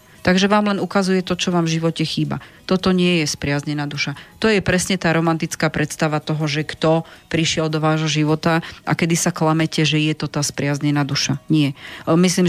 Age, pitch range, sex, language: 30-49, 155-180 Hz, female, Slovak